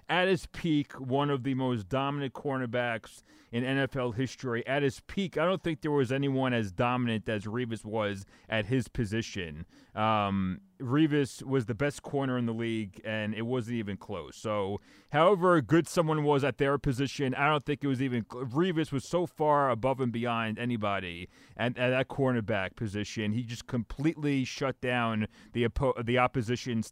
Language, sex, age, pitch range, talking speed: English, male, 30-49, 110-135 Hz, 175 wpm